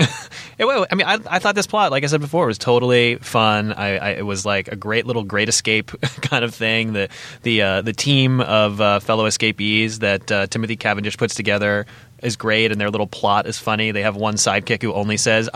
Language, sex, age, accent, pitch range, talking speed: English, male, 20-39, American, 105-125 Hz, 230 wpm